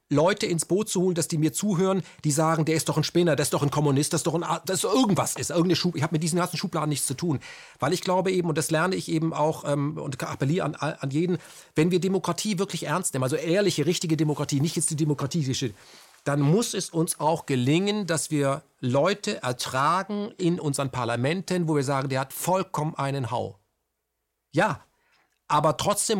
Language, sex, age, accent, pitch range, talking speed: German, male, 40-59, German, 145-175 Hz, 215 wpm